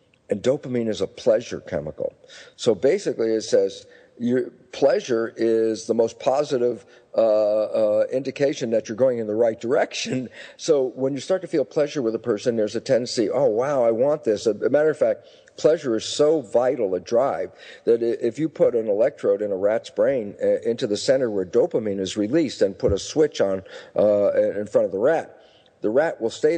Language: English